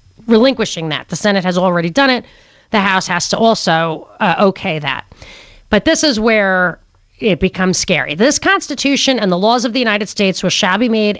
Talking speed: 190 wpm